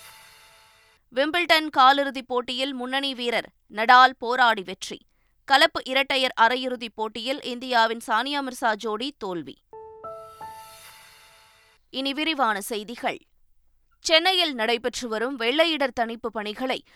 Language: Tamil